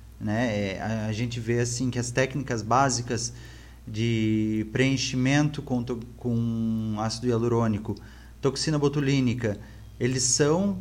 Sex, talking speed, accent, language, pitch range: male, 100 wpm, Brazilian, Portuguese, 115-155 Hz